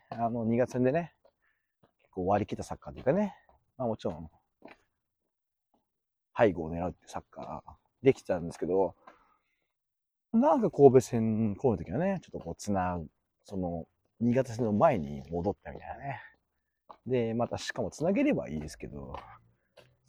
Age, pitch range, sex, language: 40-59, 85-115 Hz, male, Japanese